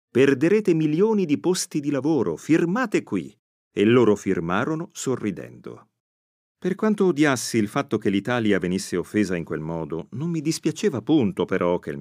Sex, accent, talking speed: male, native, 155 wpm